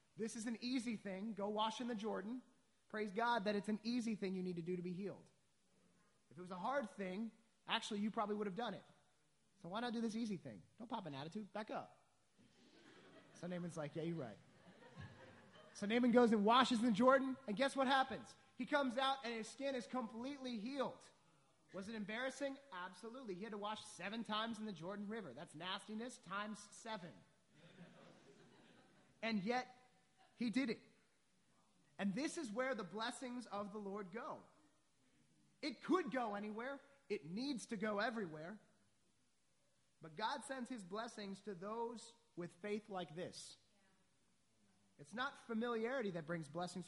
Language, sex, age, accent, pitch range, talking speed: English, male, 30-49, American, 195-250 Hz, 175 wpm